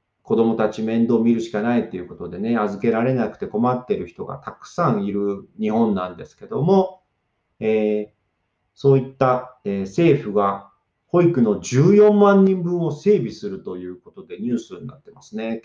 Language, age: Japanese, 40-59